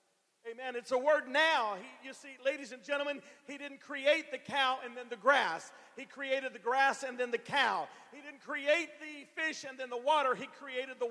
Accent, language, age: American, English, 40-59